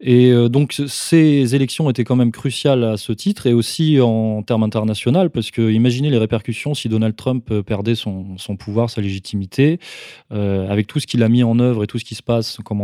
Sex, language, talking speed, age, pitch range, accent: male, French, 215 wpm, 20-39, 110-145 Hz, French